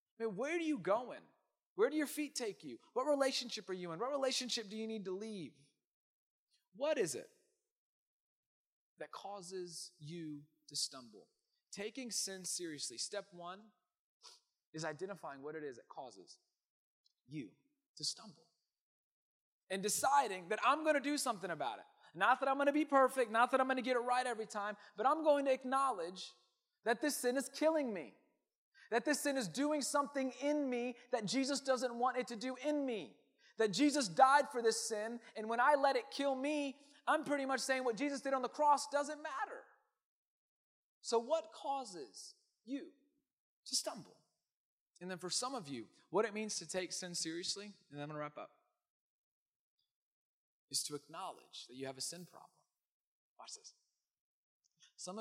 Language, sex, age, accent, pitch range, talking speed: English, male, 30-49, American, 195-290 Hz, 175 wpm